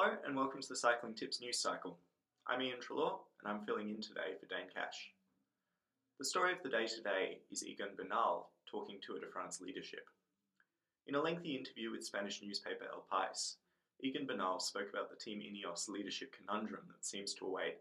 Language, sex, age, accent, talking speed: English, male, 20-39, Australian, 190 wpm